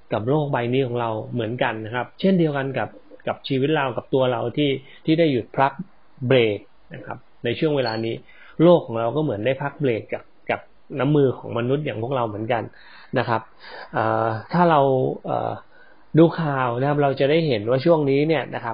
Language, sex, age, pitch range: Thai, male, 20-39, 120-150 Hz